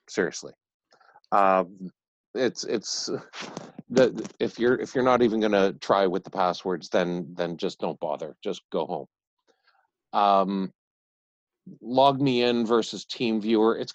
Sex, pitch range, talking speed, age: male, 95-115 Hz, 140 wpm, 50-69